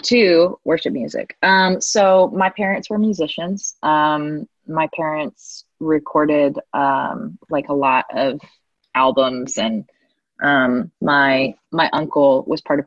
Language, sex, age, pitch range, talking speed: English, female, 20-39, 135-190 Hz, 125 wpm